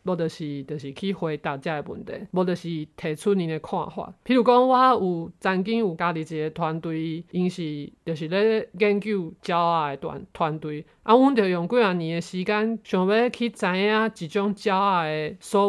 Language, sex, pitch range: Chinese, male, 165-215 Hz